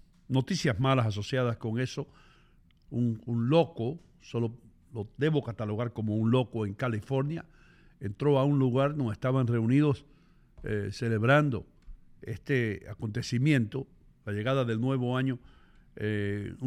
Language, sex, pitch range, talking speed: English, male, 120-155 Hz, 120 wpm